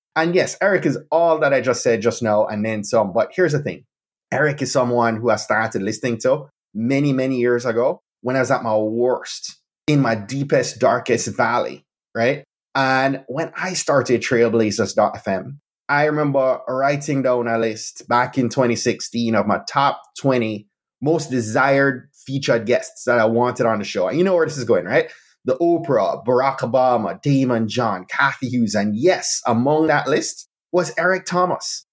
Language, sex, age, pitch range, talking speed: English, male, 20-39, 120-155 Hz, 180 wpm